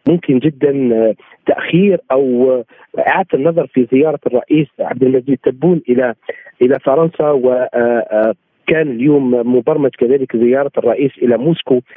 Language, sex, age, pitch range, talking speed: Arabic, male, 50-69, 130-170 Hz, 120 wpm